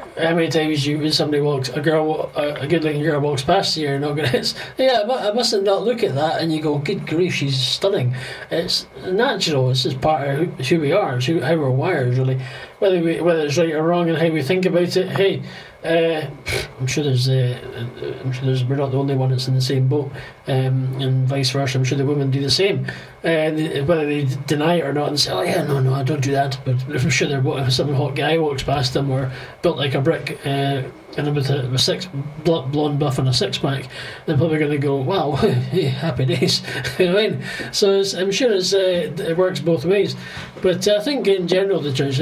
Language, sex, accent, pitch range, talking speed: English, male, British, 135-165 Hz, 230 wpm